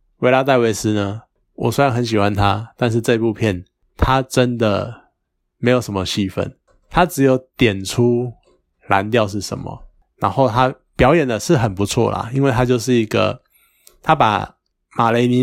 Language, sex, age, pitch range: Chinese, male, 20-39, 100-125 Hz